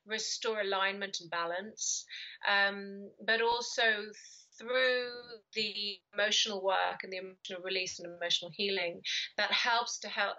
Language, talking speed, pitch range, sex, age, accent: English, 125 wpm, 185-230 Hz, female, 30-49, British